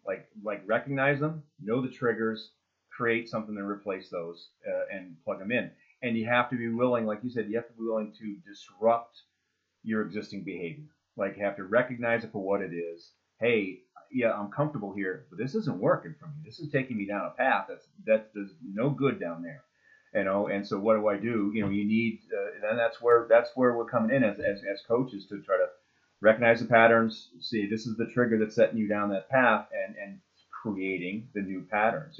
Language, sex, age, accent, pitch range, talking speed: English, male, 30-49, American, 100-125 Hz, 220 wpm